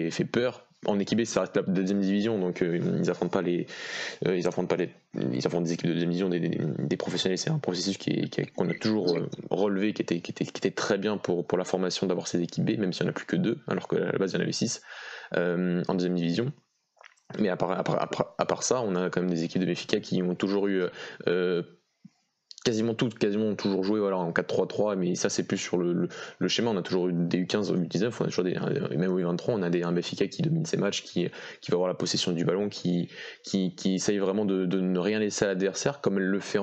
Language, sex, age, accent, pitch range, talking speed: French, male, 20-39, French, 90-100 Hz, 275 wpm